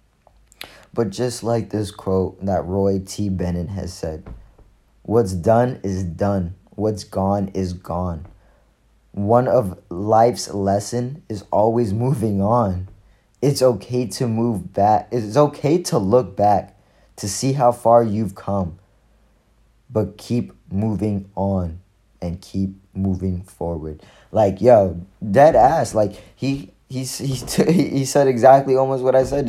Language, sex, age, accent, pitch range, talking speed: English, male, 20-39, American, 100-125 Hz, 135 wpm